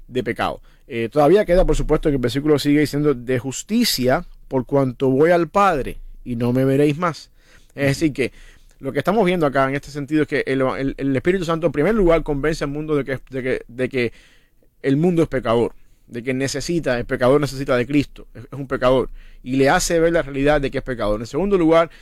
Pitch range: 130-155 Hz